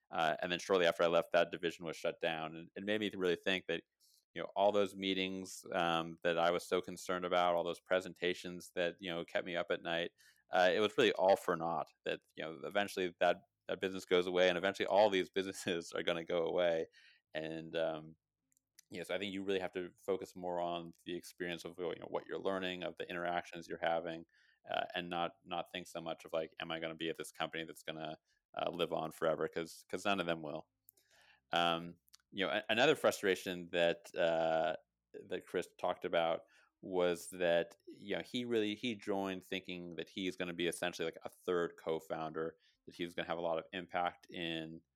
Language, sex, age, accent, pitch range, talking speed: English, male, 30-49, American, 85-95 Hz, 225 wpm